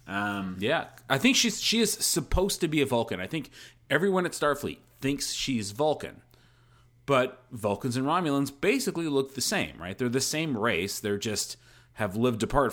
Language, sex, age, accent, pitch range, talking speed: English, male, 30-49, American, 100-125 Hz, 180 wpm